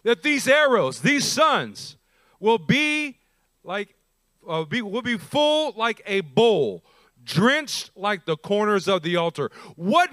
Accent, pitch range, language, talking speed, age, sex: American, 175-250 Hz, English, 140 wpm, 40-59, male